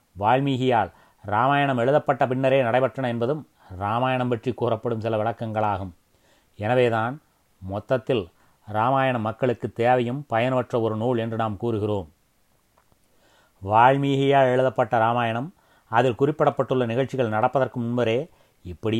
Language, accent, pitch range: Tamil, native, 115-135 Hz